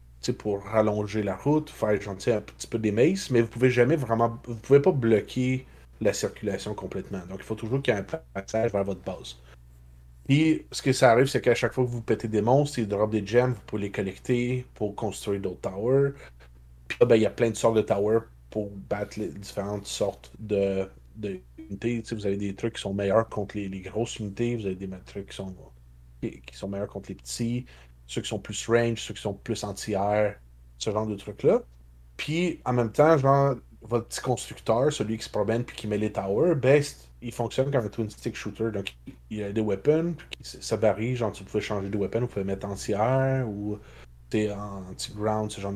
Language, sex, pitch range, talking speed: French, male, 100-120 Hz, 215 wpm